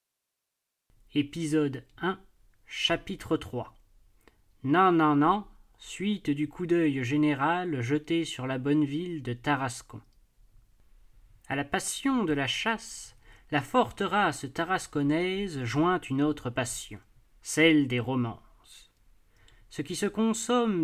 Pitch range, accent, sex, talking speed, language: 130-175 Hz, French, male, 115 wpm, French